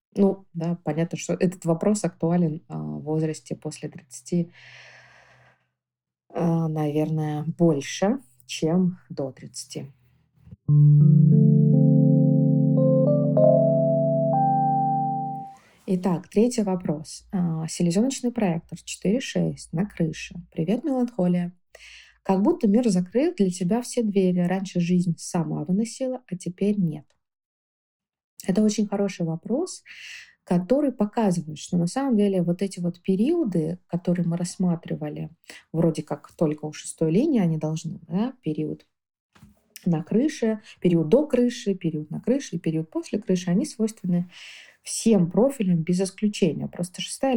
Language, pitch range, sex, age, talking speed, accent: Russian, 160-200 Hz, female, 20-39, 110 wpm, native